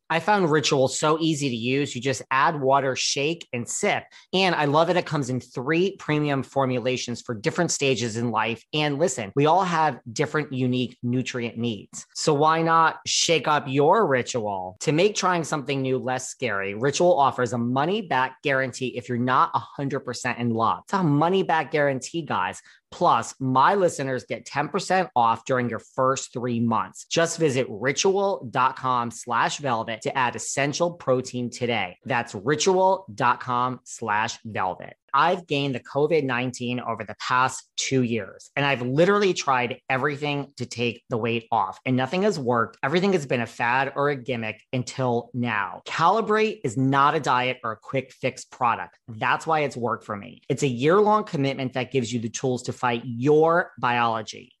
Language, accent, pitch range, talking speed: English, American, 125-155 Hz, 175 wpm